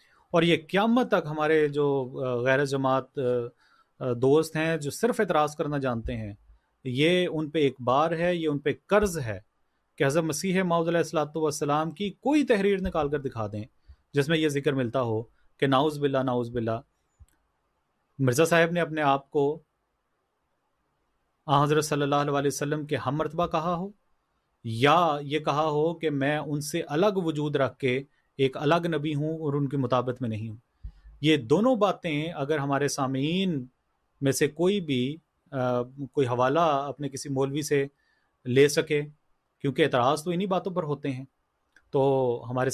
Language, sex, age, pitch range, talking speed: Urdu, male, 30-49, 135-165 Hz, 170 wpm